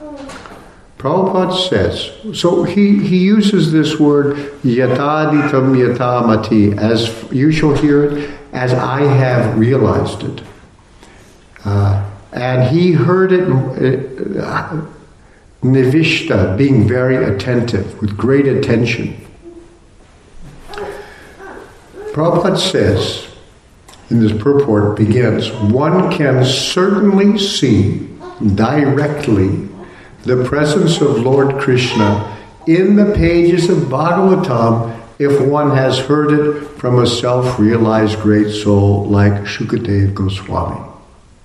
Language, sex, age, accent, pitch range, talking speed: English, male, 60-79, American, 115-160 Hz, 95 wpm